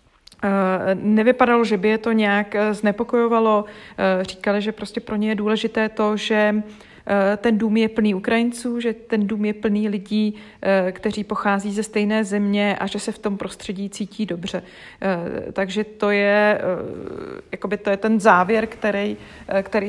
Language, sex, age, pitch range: Czech, female, 30-49, 195-220 Hz